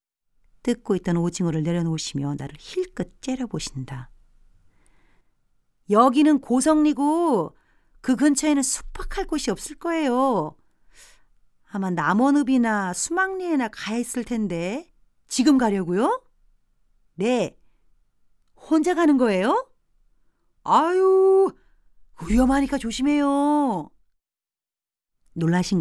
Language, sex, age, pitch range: Korean, female, 40-59, 140-215 Hz